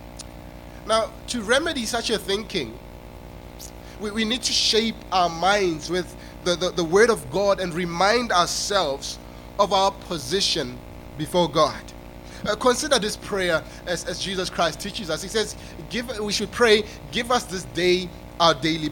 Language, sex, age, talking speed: English, male, 20-39, 155 wpm